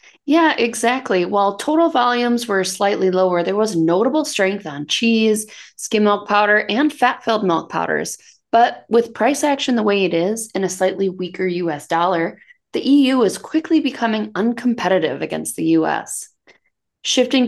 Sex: female